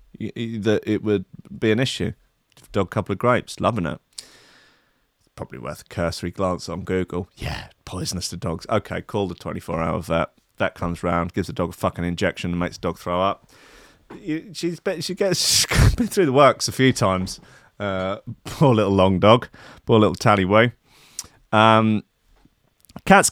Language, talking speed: English, 170 wpm